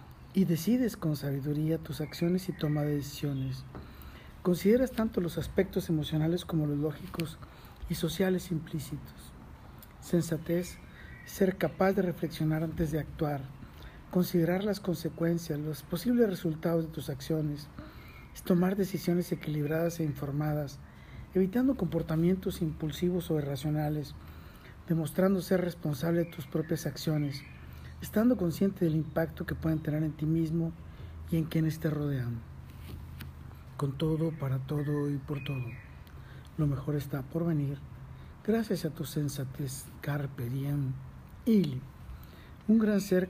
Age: 50-69